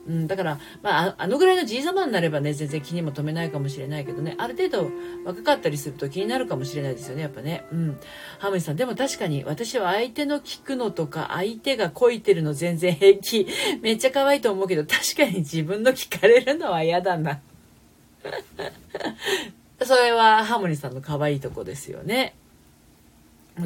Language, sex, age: Japanese, female, 40-59